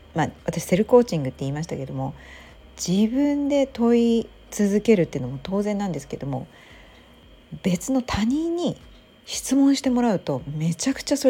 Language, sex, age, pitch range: Japanese, female, 40-59, 150-245 Hz